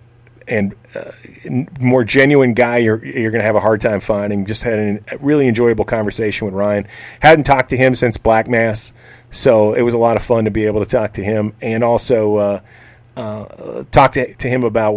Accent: American